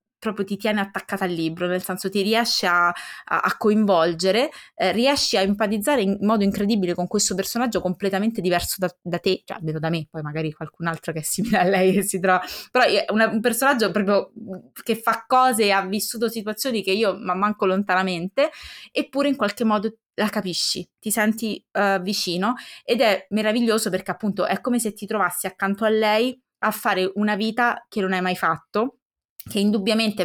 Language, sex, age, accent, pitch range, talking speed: Italian, female, 20-39, native, 180-215 Hz, 190 wpm